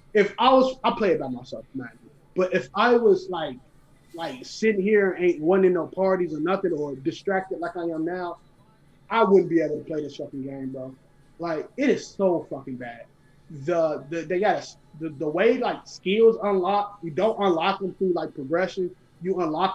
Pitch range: 145-195 Hz